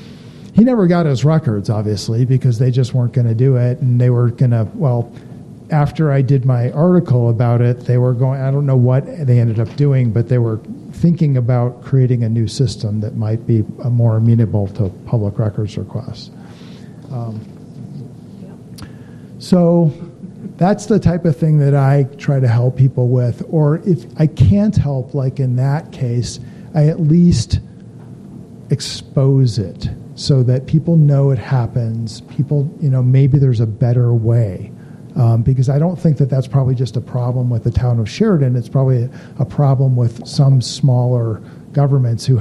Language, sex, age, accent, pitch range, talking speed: English, male, 50-69, American, 120-145 Hz, 175 wpm